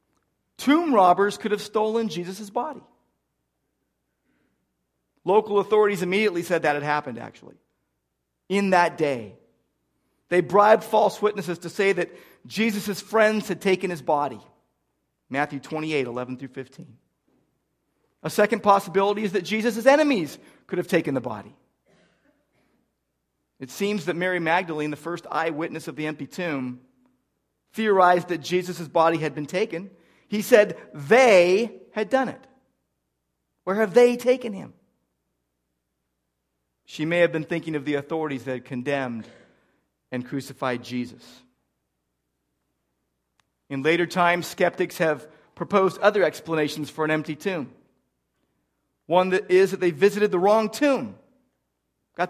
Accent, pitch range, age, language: American, 140-205 Hz, 40-59, English